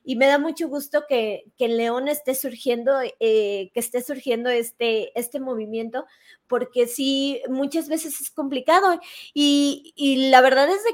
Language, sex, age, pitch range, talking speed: Spanish, female, 20-39, 255-315 Hz, 165 wpm